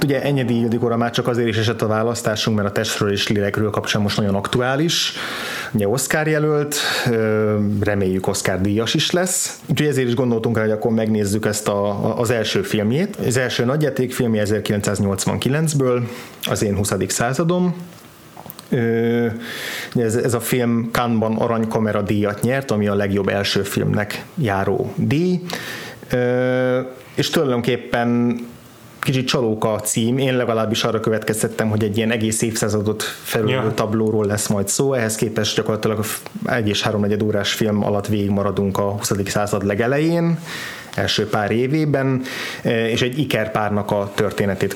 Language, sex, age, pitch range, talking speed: Hungarian, male, 30-49, 105-125 Hz, 145 wpm